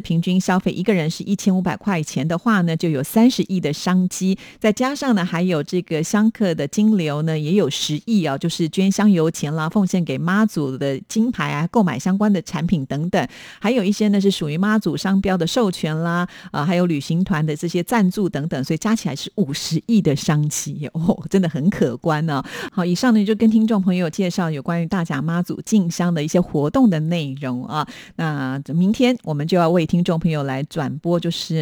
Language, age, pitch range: Chinese, 50-69, 160-205 Hz